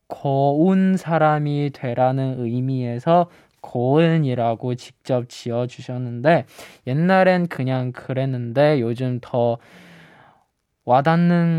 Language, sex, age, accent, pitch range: Korean, male, 20-39, native, 125-165 Hz